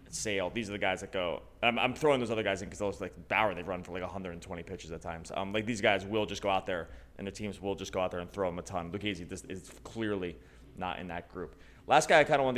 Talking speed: 300 wpm